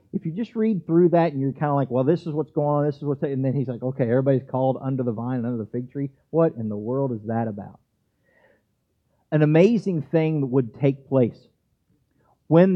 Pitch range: 120-160 Hz